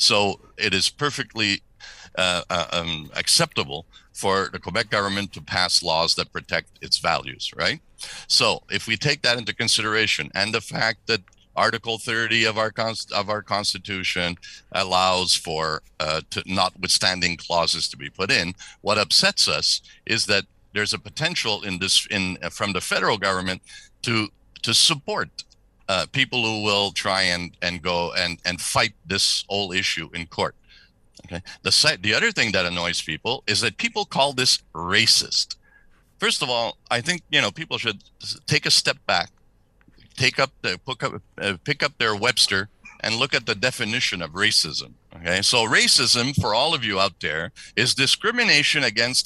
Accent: American